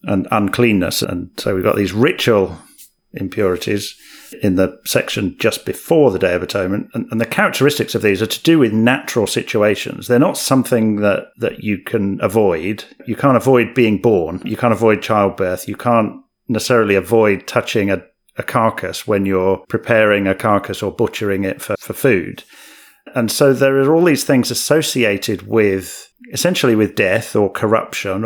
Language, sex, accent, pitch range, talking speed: English, male, British, 100-130 Hz, 170 wpm